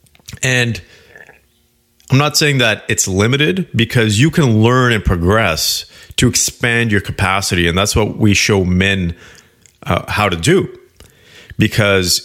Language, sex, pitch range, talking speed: English, male, 100-130 Hz, 135 wpm